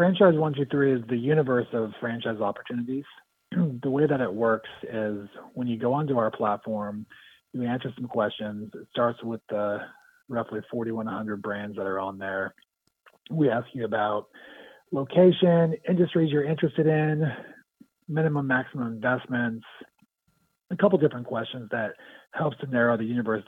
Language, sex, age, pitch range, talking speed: English, male, 30-49, 110-140 Hz, 145 wpm